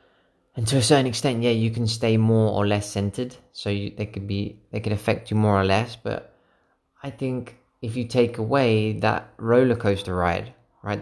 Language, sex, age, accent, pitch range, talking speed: English, male, 20-39, British, 95-110 Hz, 200 wpm